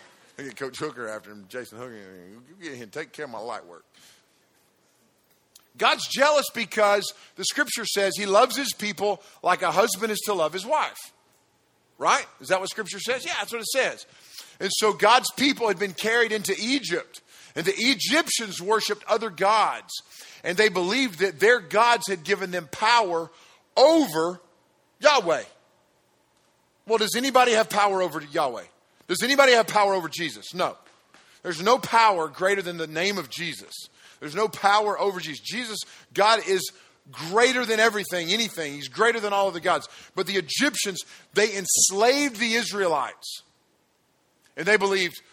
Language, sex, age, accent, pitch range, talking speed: English, male, 50-69, American, 180-230 Hz, 160 wpm